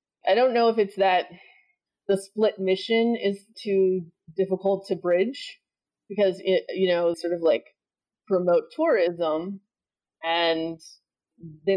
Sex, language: female, English